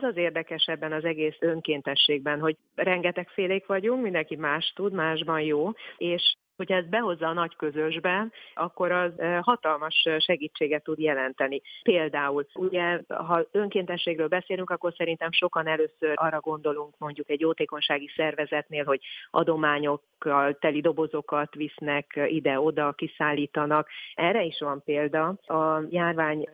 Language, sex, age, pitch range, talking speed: Hungarian, female, 30-49, 150-165 Hz, 125 wpm